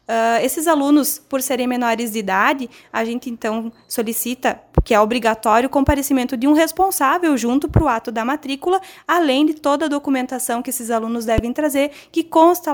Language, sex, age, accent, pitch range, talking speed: Portuguese, female, 20-39, Brazilian, 240-320 Hz, 175 wpm